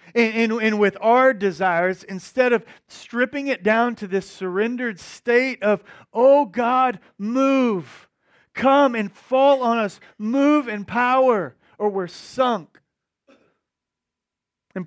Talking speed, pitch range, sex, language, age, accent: 115 wpm, 185-245 Hz, male, English, 40-59, American